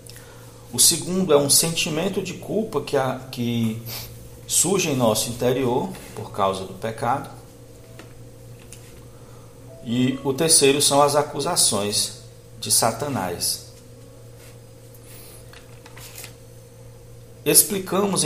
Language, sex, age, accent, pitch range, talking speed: Portuguese, male, 50-69, Brazilian, 115-130 Hz, 80 wpm